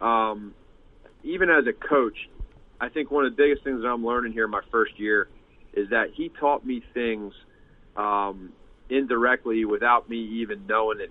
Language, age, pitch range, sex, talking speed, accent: English, 40-59, 100-120 Hz, male, 175 wpm, American